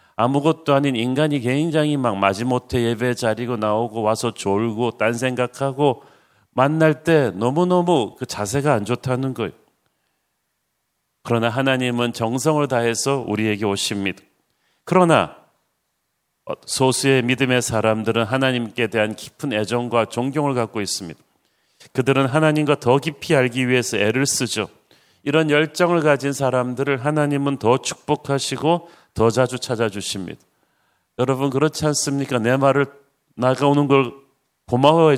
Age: 40-59